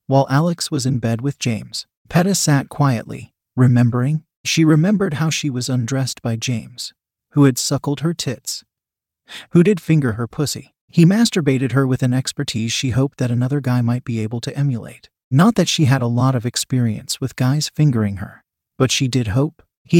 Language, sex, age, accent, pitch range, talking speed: English, male, 40-59, American, 125-160 Hz, 185 wpm